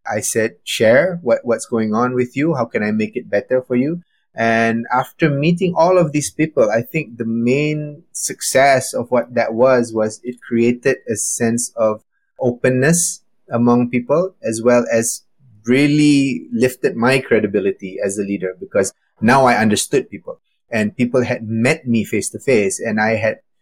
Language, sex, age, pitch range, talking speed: English, male, 20-39, 110-135 Hz, 165 wpm